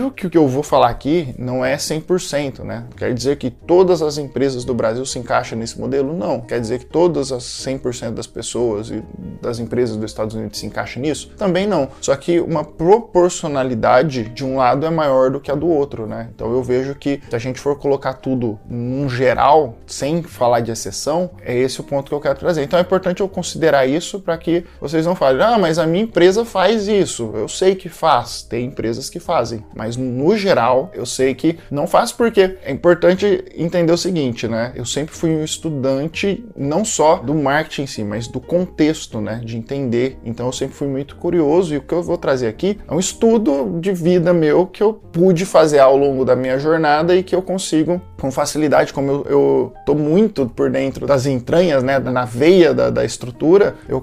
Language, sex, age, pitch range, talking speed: Portuguese, male, 20-39, 125-170 Hz, 210 wpm